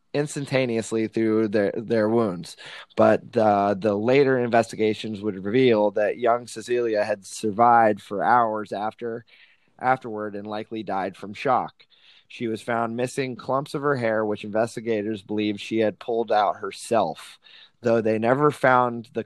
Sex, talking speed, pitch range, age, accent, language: male, 145 wpm, 110-120 Hz, 20-39, American, English